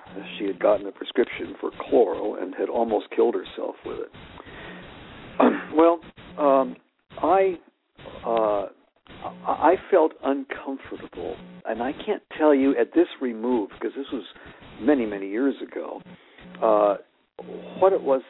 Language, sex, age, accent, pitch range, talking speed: English, male, 60-79, American, 100-145 Hz, 130 wpm